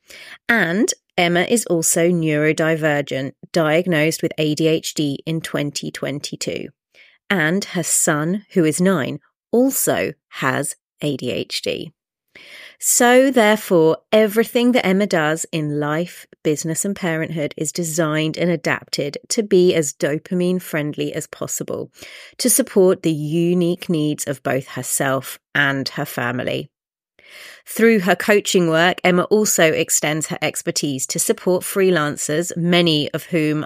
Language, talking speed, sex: English, 120 wpm, female